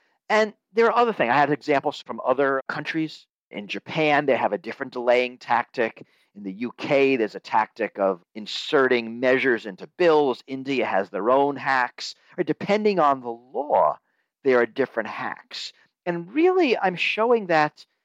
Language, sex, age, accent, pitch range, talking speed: English, male, 50-69, American, 135-220 Hz, 165 wpm